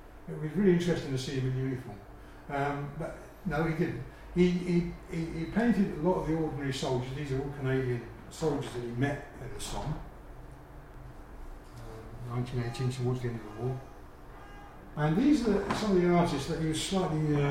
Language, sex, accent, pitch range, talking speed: English, male, British, 130-165 Hz, 190 wpm